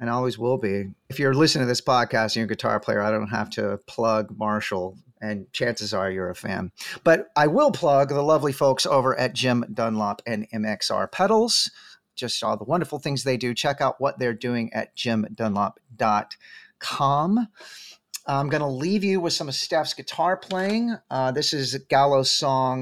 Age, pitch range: 40-59, 110-135 Hz